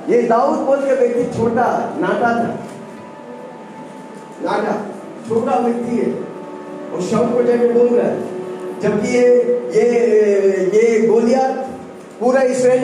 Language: Hindi